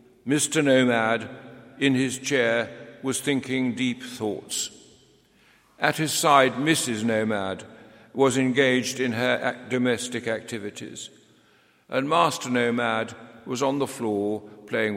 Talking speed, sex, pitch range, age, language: 110 wpm, male, 120-140 Hz, 60-79, English